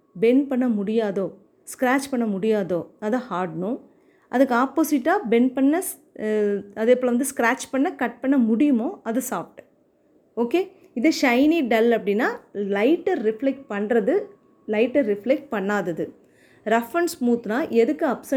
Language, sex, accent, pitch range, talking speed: Tamil, female, native, 215-290 Hz, 120 wpm